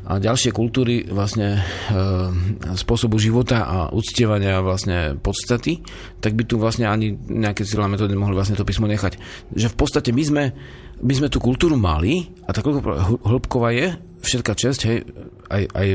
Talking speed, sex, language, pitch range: 160 wpm, male, Slovak, 95-115 Hz